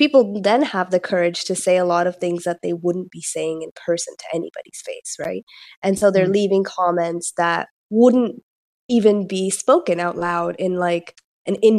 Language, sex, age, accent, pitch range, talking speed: English, female, 20-39, American, 175-210 Hz, 195 wpm